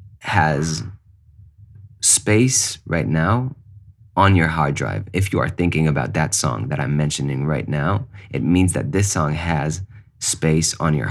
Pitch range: 80-105 Hz